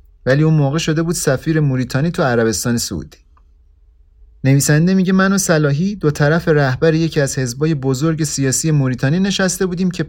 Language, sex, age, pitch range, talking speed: Persian, male, 30-49, 115-165 Hz, 160 wpm